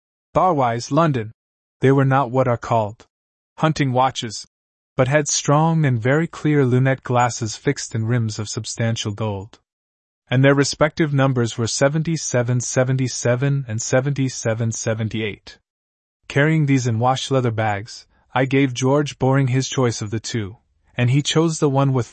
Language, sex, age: English, male, 20-39